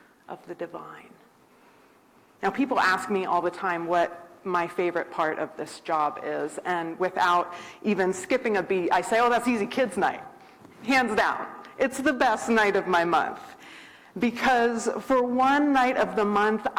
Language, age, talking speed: English, 30-49, 170 wpm